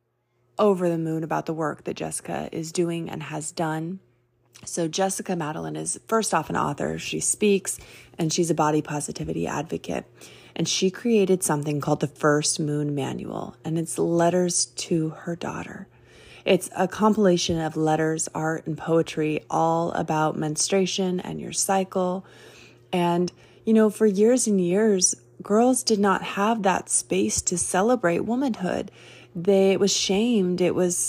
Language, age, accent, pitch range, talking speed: English, 20-39, American, 170-205 Hz, 150 wpm